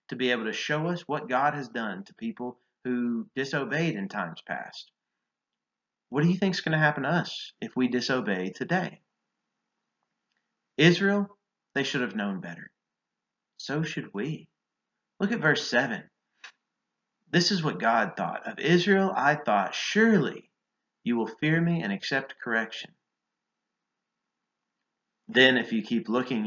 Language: English